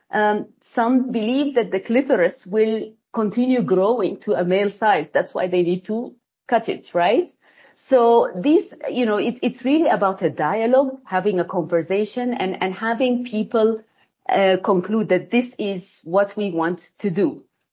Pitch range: 185-245 Hz